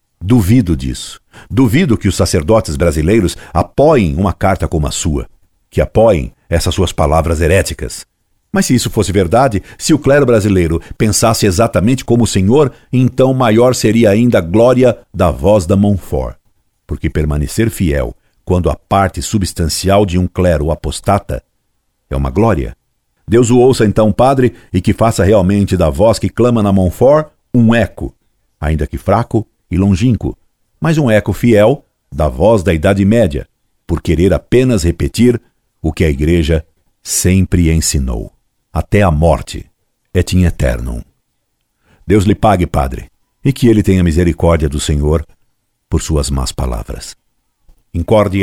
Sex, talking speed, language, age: male, 150 wpm, Portuguese, 60-79